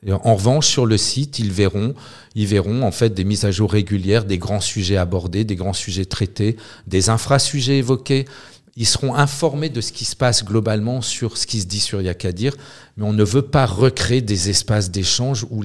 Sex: male